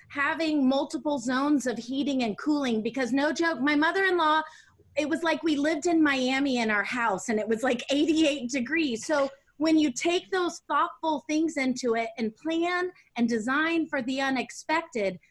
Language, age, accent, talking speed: English, 30-49, American, 175 wpm